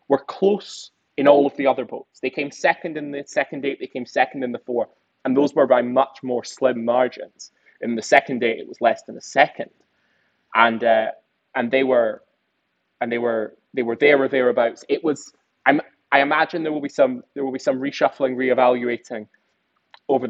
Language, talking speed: English, 200 wpm